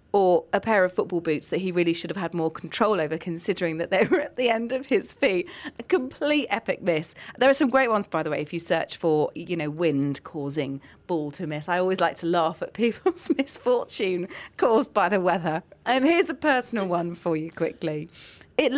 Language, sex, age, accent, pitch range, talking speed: English, female, 30-49, British, 165-275 Hz, 220 wpm